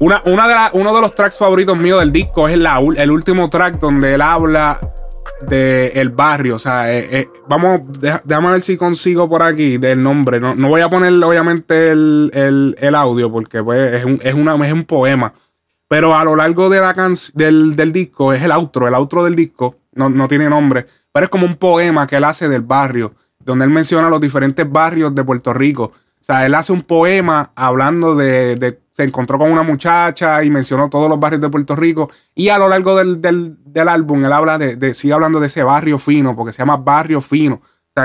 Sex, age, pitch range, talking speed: male, 20-39, 135-165 Hz, 200 wpm